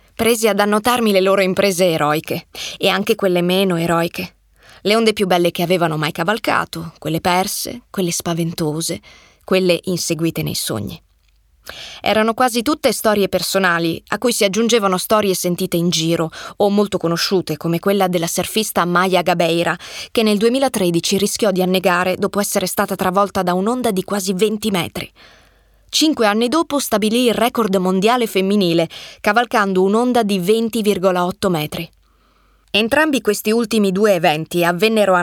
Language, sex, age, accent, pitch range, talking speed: Italian, female, 20-39, native, 175-225 Hz, 145 wpm